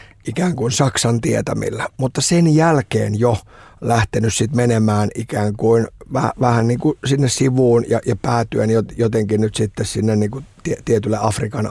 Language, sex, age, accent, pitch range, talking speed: Finnish, male, 50-69, native, 110-140 Hz, 155 wpm